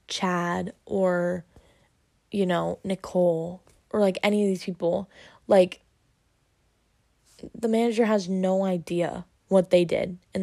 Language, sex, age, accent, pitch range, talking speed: English, female, 10-29, American, 175-200 Hz, 120 wpm